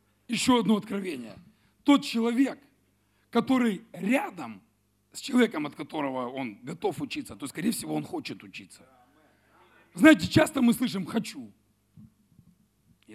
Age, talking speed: 40-59, 120 wpm